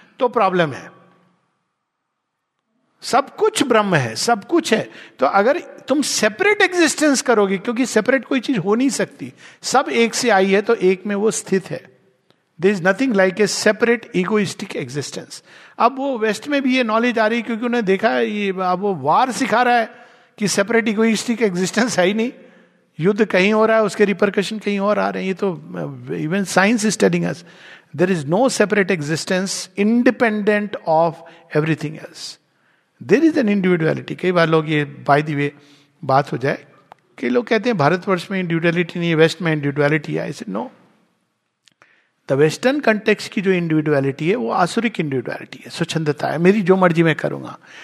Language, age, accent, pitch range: Hindi, 50-69, native, 170-235 Hz